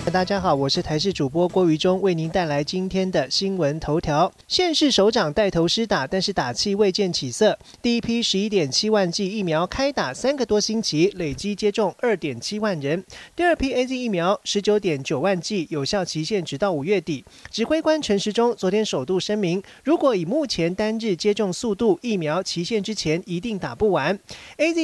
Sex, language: male, Chinese